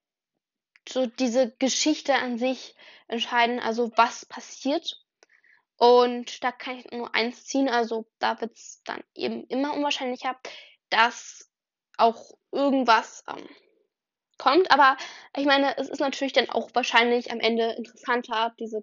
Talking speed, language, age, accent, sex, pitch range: 135 wpm, German, 10-29, German, female, 245-290 Hz